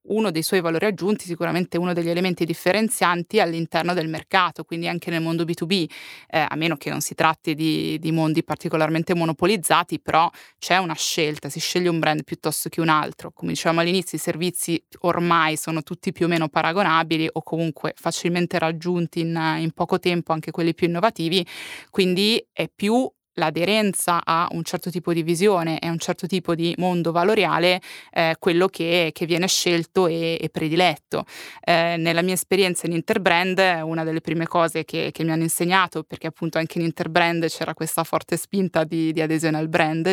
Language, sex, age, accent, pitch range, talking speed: Italian, female, 20-39, native, 160-180 Hz, 180 wpm